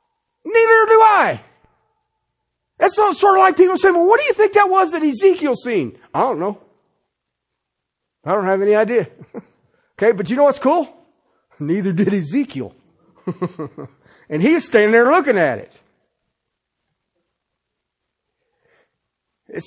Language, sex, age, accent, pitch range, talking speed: English, male, 50-69, American, 195-300 Hz, 135 wpm